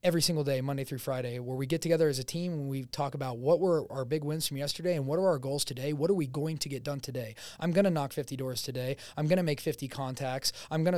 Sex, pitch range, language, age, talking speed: male, 130-150 Hz, English, 20-39, 290 wpm